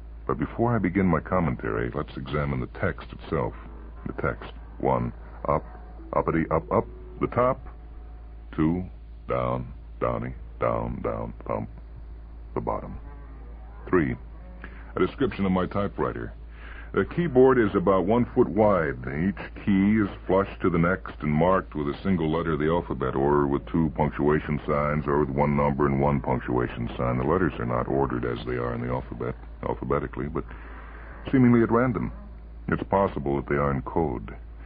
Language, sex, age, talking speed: English, female, 60-79, 160 wpm